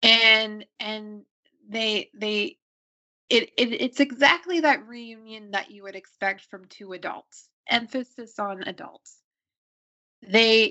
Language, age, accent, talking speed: English, 20-39, American, 120 wpm